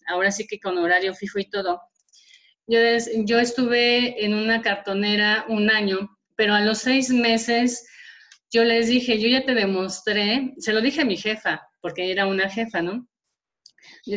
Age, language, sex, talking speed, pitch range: 30-49, Spanish, female, 175 wpm, 195-235 Hz